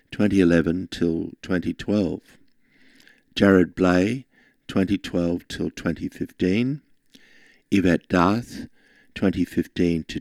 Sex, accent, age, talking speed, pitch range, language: male, Australian, 60-79, 100 wpm, 90-105 Hz, English